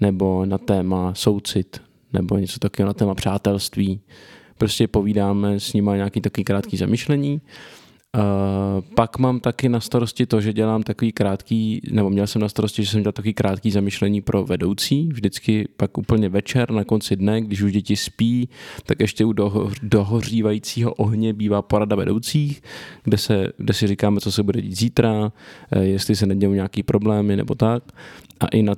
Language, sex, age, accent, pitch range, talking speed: Czech, male, 20-39, native, 100-115 Hz, 175 wpm